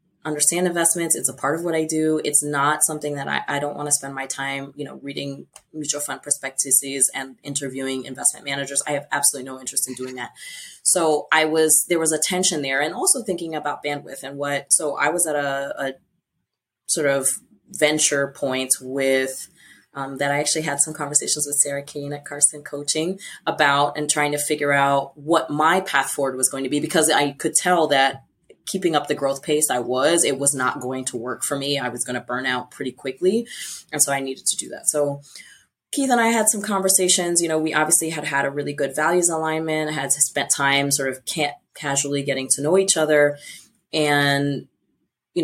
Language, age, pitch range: English, 20-39, 135-155 Hz